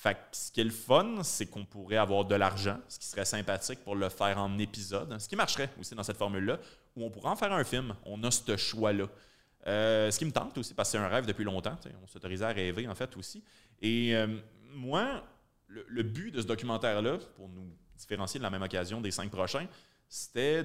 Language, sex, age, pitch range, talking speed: French, male, 30-49, 100-115 Hz, 235 wpm